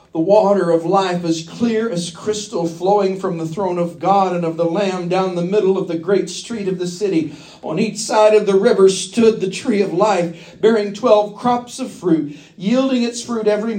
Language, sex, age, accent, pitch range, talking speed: English, male, 50-69, American, 170-210 Hz, 210 wpm